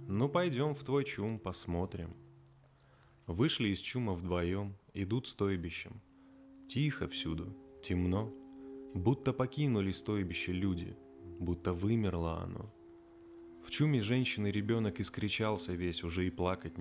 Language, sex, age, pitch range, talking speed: Russian, male, 20-39, 85-125 Hz, 110 wpm